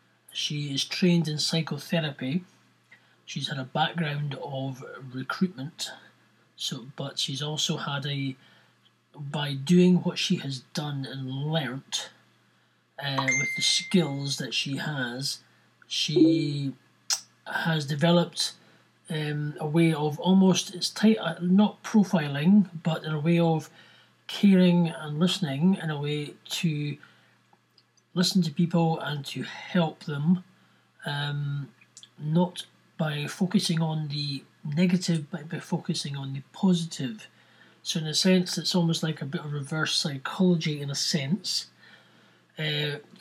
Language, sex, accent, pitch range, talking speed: English, male, British, 140-175 Hz, 130 wpm